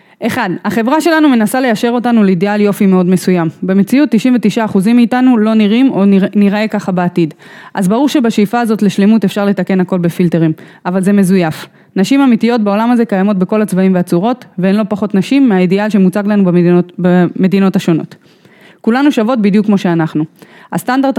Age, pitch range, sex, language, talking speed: 20-39, 185-225 Hz, female, English, 160 wpm